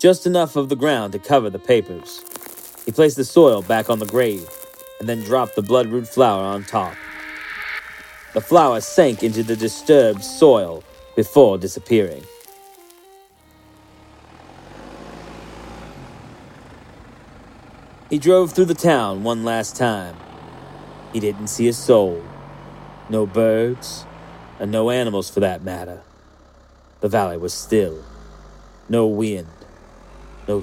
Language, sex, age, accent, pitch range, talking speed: English, male, 40-59, American, 95-130 Hz, 120 wpm